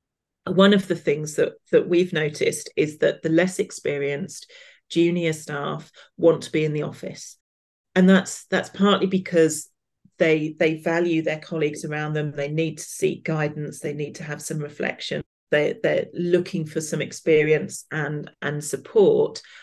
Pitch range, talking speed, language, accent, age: 155-190 Hz, 160 wpm, English, British, 40-59